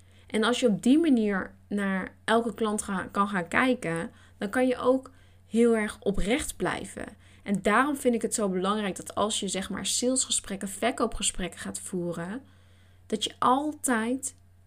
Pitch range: 185-230 Hz